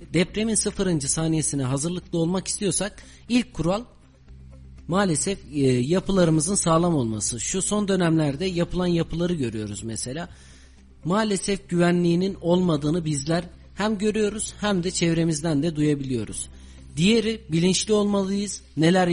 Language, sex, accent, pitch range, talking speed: Turkish, male, native, 135-190 Hz, 110 wpm